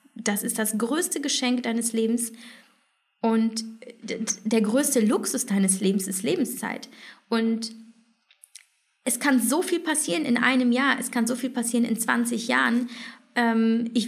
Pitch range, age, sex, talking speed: 225-255 Hz, 20-39, female, 140 wpm